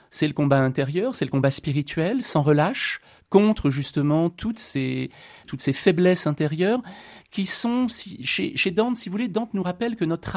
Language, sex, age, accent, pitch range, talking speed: French, male, 30-49, French, 135-180 Hz, 185 wpm